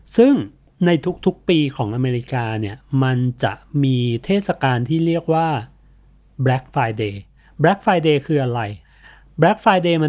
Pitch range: 120-155 Hz